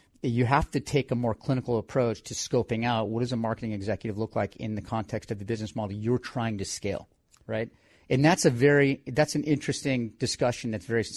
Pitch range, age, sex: 110-135 Hz, 40-59, male